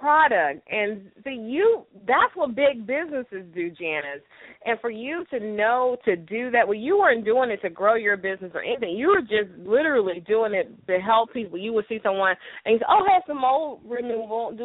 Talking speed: 215 wpm